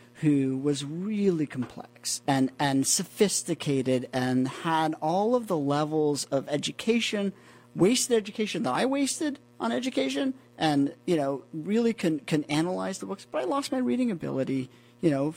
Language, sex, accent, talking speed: English, male, American, 150 wpm